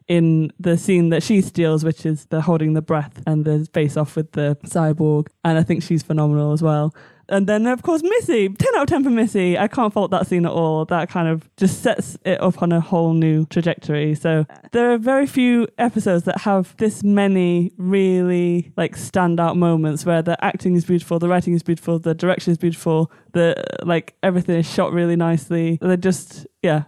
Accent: British